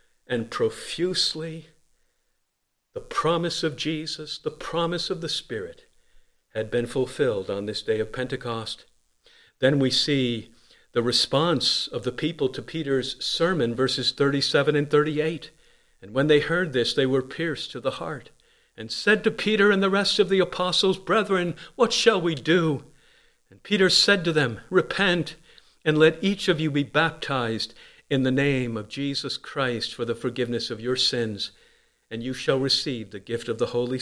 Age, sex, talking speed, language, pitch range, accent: 50-69, male, 165 wpm, English, 120-180 Hz, American